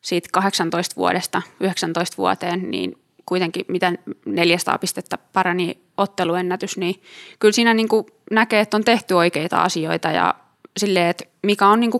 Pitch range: 175-205 Hz